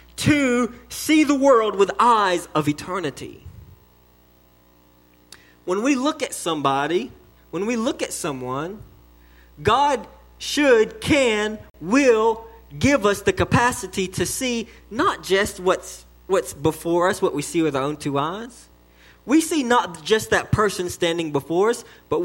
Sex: male